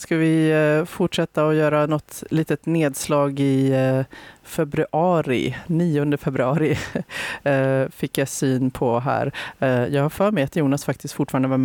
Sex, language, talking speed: female, Swedish, 140 wpm